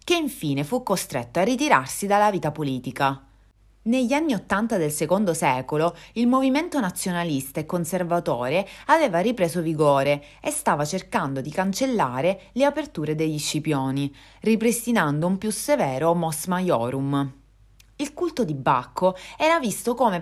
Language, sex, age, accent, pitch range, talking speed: Italian, female, 30-49, native, 145-240 Hz, 135 wpm